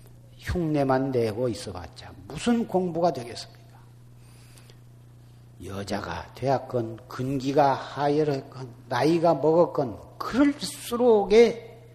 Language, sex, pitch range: Korean, male, 120-155 Hz